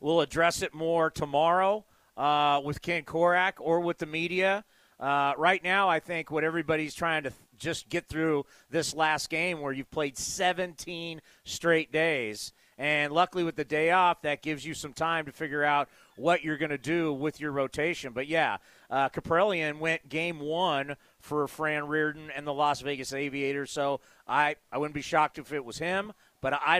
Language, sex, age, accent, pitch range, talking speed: English, male, 40-59, American, 150-195 Hz, 185 wpm